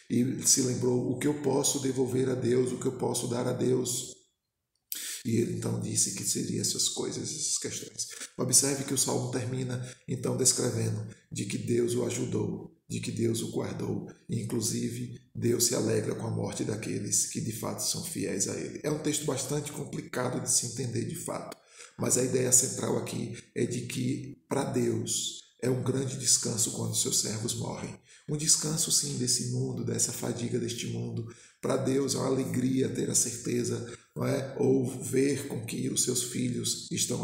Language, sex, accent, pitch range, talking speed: Portuguese, male, Brazilian, 120-135 Hz, 185 wpm